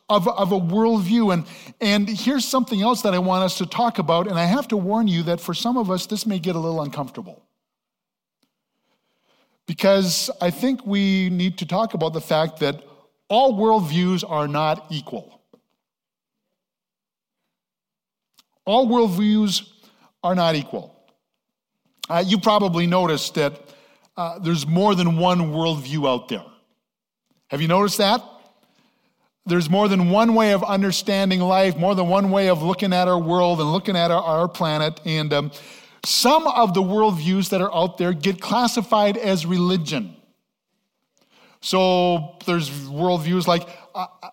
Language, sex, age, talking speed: English, male, 50-69, 155 wpm